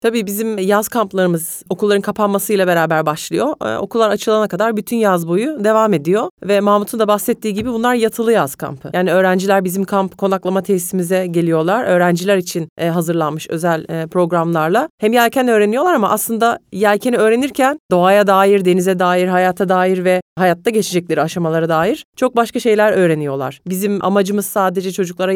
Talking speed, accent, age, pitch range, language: 150 wpm, native, 40-59, 175-205 Hz, Turkish